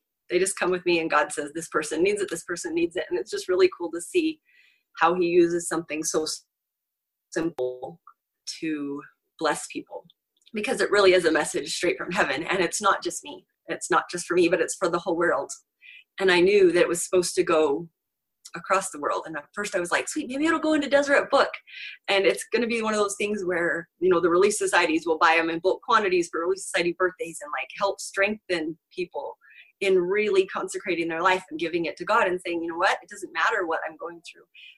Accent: American